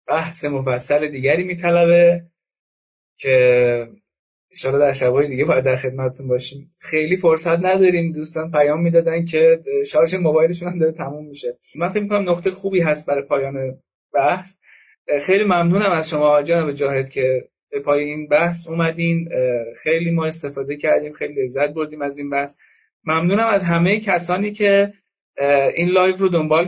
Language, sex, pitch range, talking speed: Persian, male, 135-180 Hz, 155 wpm